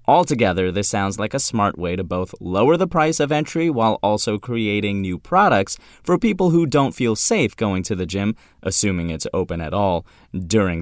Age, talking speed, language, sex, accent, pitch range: 30-49, 195 wpm, English, male, American, 95-145 Hz